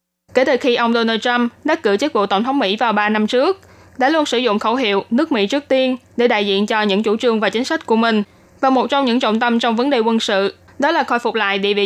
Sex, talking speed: female, 290 wpm